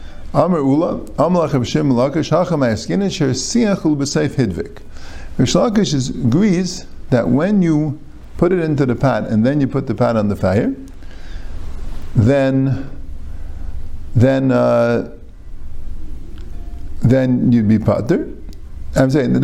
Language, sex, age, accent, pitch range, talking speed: English, male, 50-69, American, 110-155 Hz, 120 wpm